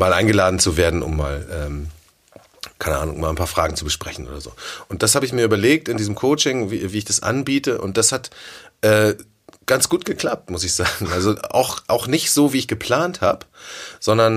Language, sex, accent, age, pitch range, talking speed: German, male, German, 30-49, 85-110 Hz, 215 wpm